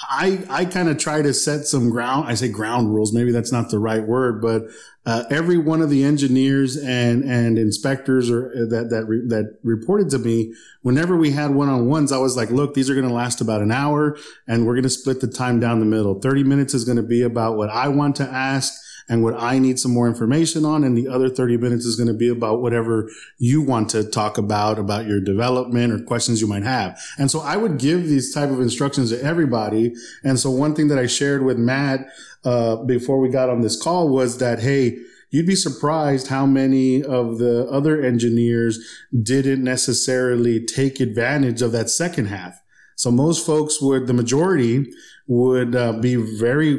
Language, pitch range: English, 120-140 Hz